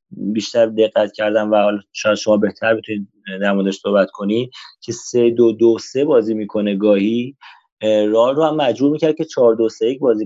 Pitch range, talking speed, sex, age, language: 105-125 Hz, 150 wpm, male, 30-49, Persian